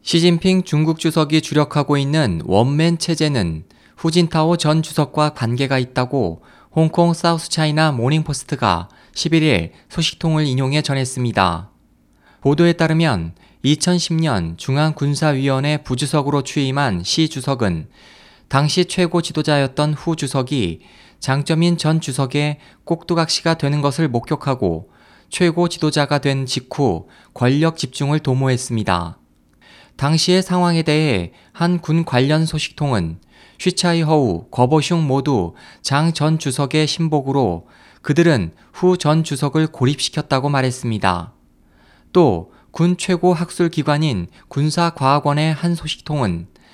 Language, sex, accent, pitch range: Korean, male, native, 130-160 Hz